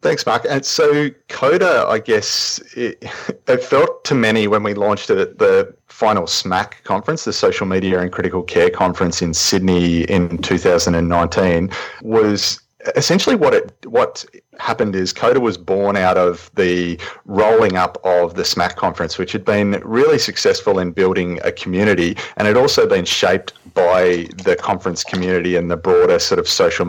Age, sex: 30-49, male